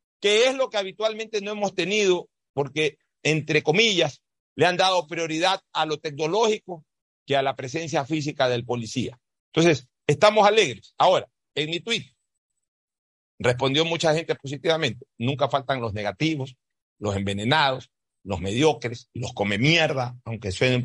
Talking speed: 145 wpm